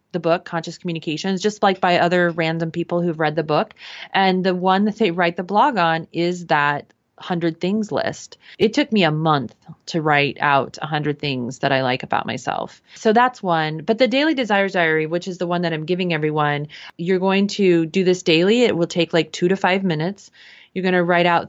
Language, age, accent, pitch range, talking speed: English, 30-49, American, 165-195 Hz, 220 wpm